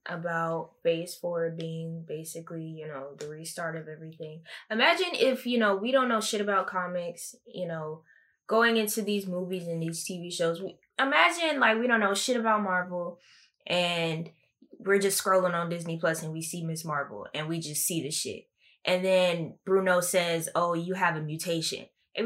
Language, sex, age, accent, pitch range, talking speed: English, female, 10-29, American, 170-225 Hz, 180 wpm